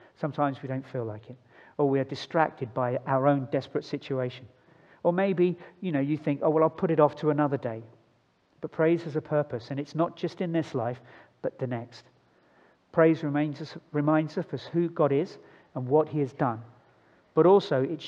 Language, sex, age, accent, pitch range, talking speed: English, male, 50-69, British, 125-160 Hz, 200 wpm